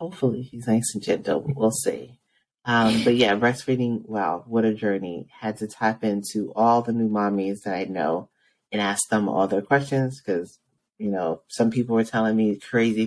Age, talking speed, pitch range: 30-49, 190 wpm, 105-125 Hz